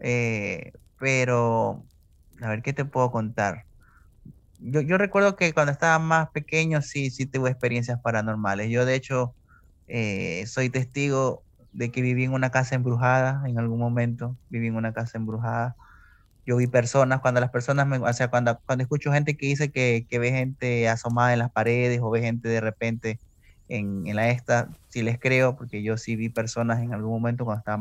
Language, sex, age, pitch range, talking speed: Spanish, male, 20-39, 115-140 Hz, 190 wpm